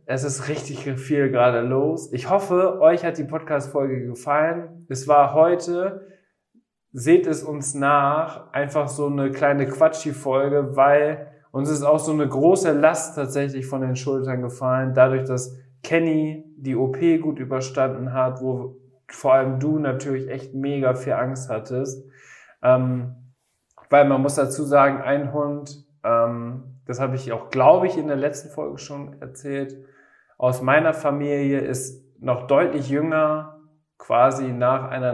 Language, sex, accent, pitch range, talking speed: German, male, German, 130-150 Hz, 150 wpm